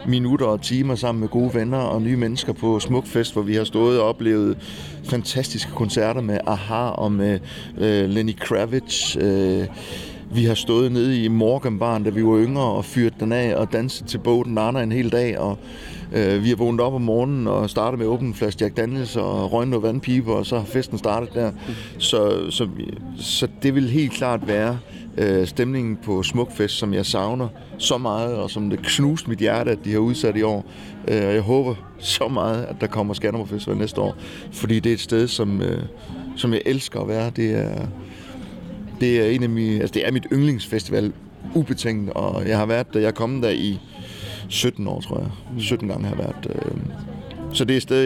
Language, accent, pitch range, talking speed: Danish, native, 105-125 Hz, 205 wpm